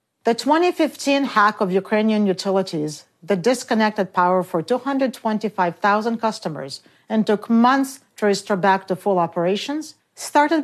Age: 50-69